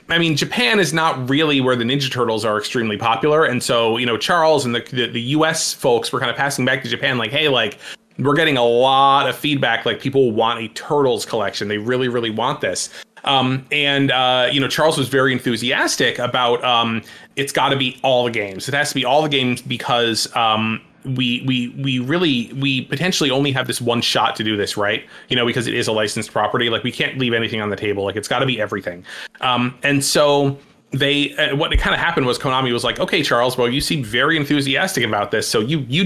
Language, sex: English, male